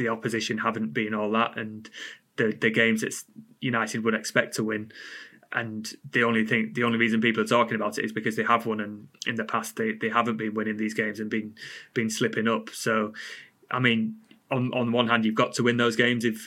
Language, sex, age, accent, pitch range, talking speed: English, male, 20-39, British, 110-120 Hz, 235 wpm